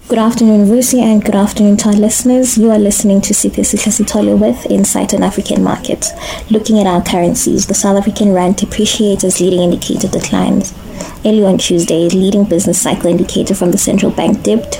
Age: 20-39